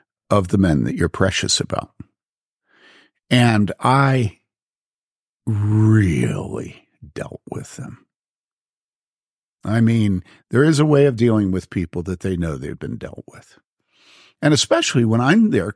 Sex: male